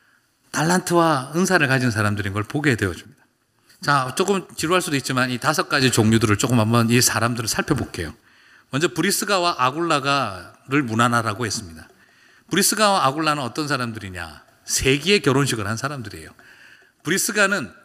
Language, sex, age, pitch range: Korean, male, 40-59, 115-165 Hz